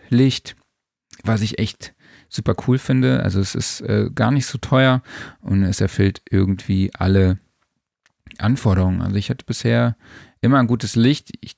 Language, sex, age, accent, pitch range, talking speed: German, male, 40-59, German, 100-125 Hz, 155 wpm